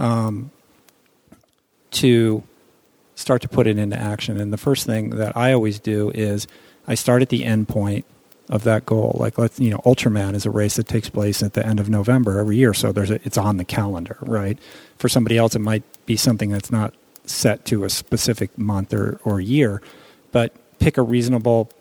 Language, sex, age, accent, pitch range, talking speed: English, male, 40-59, American, 105-120 Hz, 200 wpm